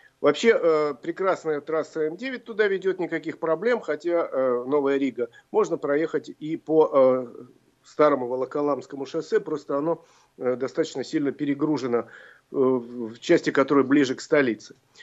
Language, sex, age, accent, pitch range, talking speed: Russian, male, 40-59, native, 140-200 Hz, 115 wpm